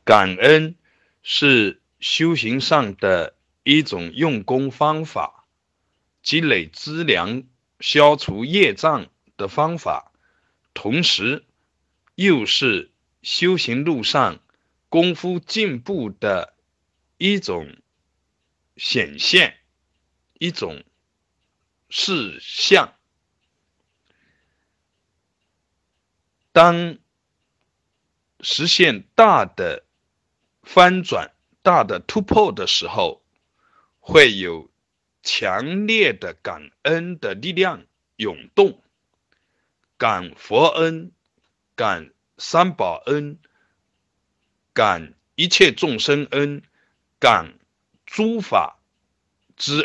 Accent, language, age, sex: native, Chinese, 60-79, male